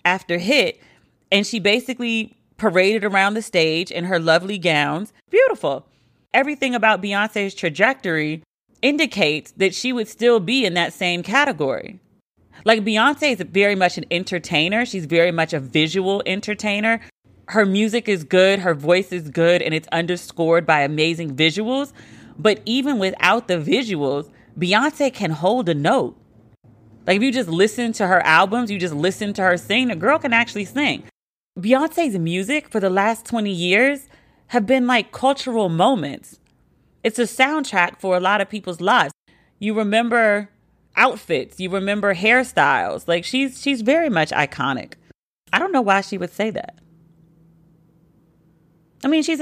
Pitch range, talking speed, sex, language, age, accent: 165-230 Hz, 155 wpm, female, English, 30-49, American